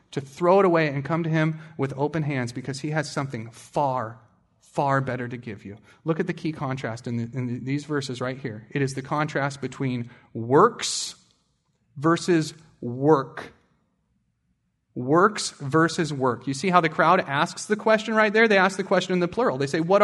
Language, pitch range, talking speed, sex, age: English, 145-200 Hz, 195 wpm, male, 30-49